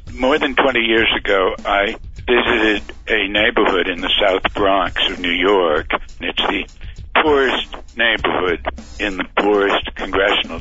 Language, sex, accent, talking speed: English, male, American, 140 wpm